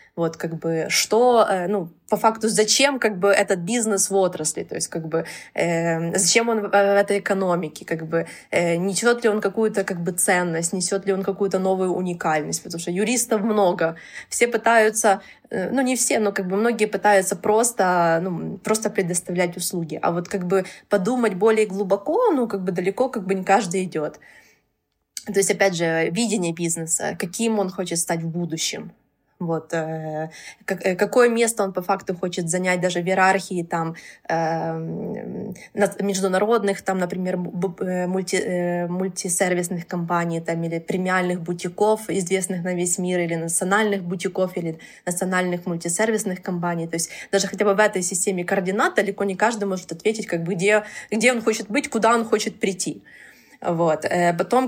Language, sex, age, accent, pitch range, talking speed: Russian, female, 20-39, native, 175-210 Hz, 135 wpm